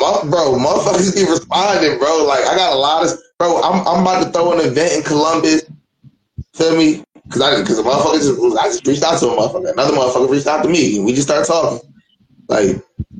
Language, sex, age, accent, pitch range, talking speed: English, male, 20-39, American, 130-180 Hz, 220 wpm